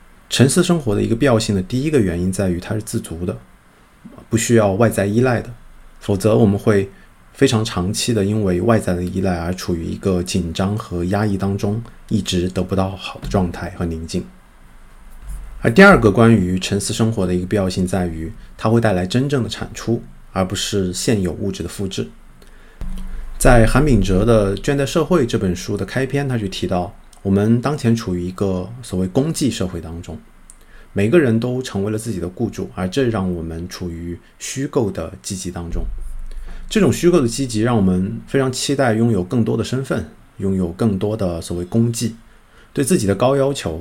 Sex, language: male, Chinese